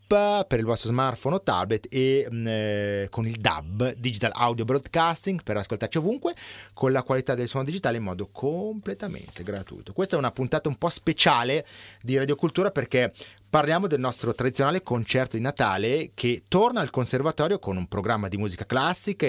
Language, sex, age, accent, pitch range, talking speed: Italian, male, 30-49, native, 115-170 Hz, 170 wpm